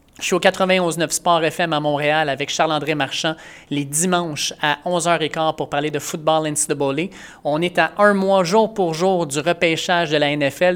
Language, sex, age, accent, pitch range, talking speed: French, male, 30-49, Canadian, 155-180 Hz, 185 wpm